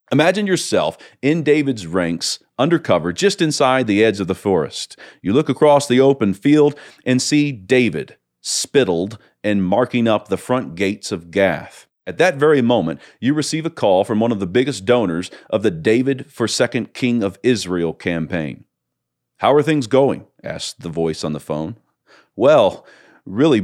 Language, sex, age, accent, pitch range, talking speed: English, male, 40-59, American, 95-130 Hz, 170 wpm